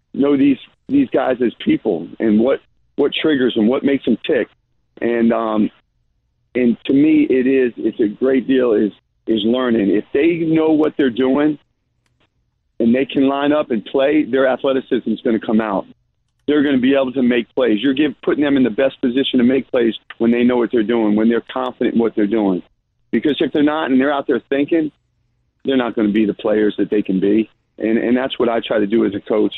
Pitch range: 115-145 Hz